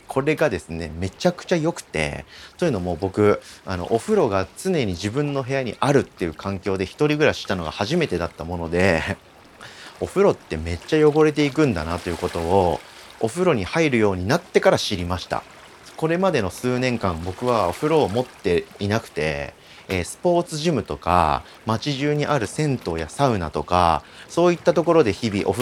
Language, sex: Japanese, male